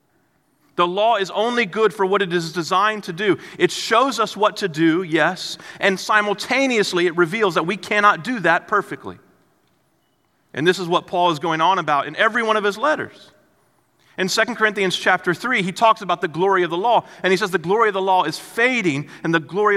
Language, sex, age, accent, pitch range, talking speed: English, male, 40-59, American, 170-220 Hz, 215 wpm